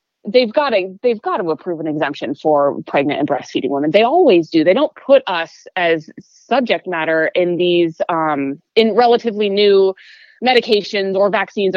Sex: female